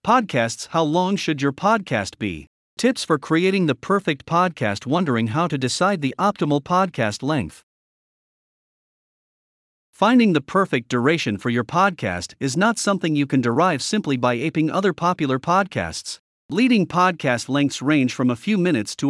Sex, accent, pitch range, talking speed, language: male, American, 125-185 Hz, 155 wpm, English